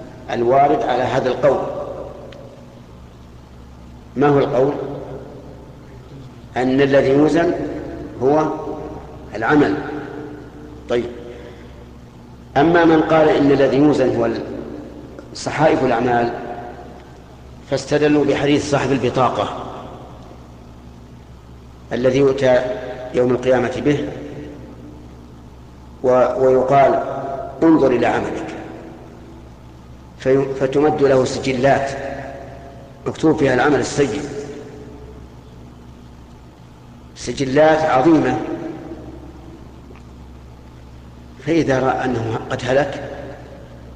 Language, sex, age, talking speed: Arabic, male, 50-69, 65 wpm